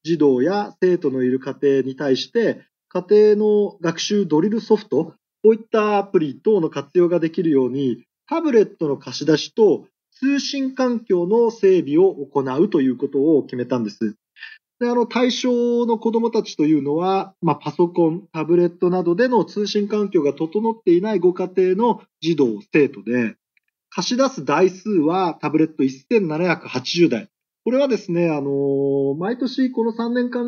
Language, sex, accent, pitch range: Japanese, male, native, 145-220 Hz